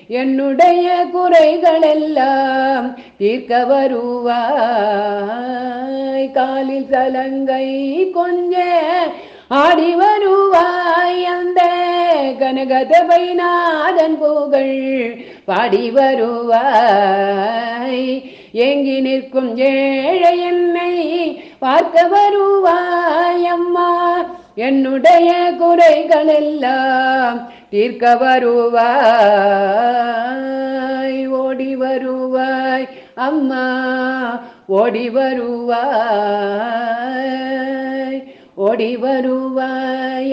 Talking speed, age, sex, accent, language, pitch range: 50 wpm, 50-69, female, native, Tamil, 235-310 Hz